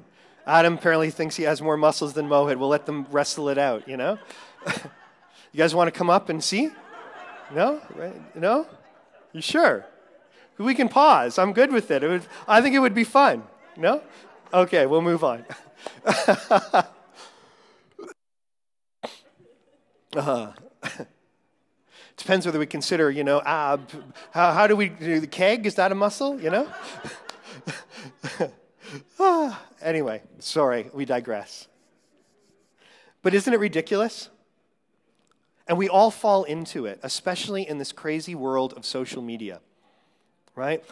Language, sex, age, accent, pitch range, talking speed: English, male, 40-59, American, 145-205 Hz, 140 wpm